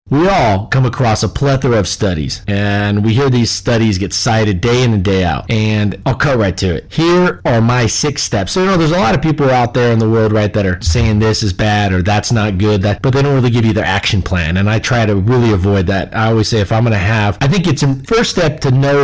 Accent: American